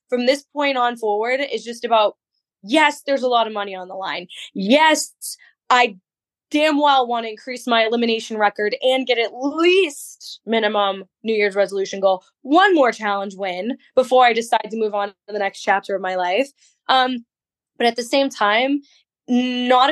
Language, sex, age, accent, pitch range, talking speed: English, female, 10-29, American, 200-255 Hz, 180 wpm